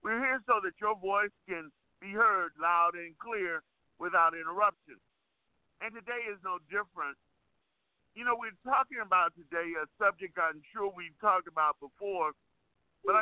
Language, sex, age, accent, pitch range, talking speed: English, male, 50-69, American, 185-240 Hz, 155 wpm